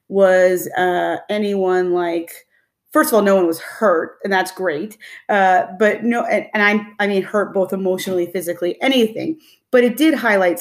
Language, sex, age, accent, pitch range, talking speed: English, female, 30-49, American, 180-215 Hz, 175 wpm